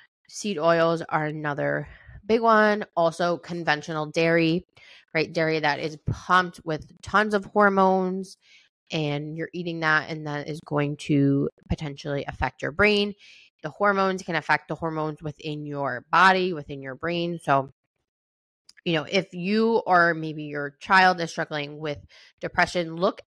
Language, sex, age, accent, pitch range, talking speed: English, female, 20-39, American, 150-190 Hz, 145 wpm